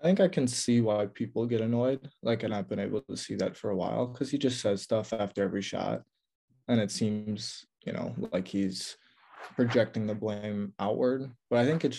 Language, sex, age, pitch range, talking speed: English, male, 20-39, 105-125 Hz, 215 wpm